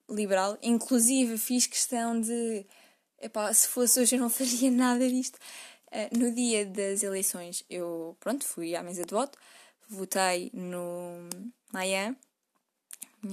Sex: female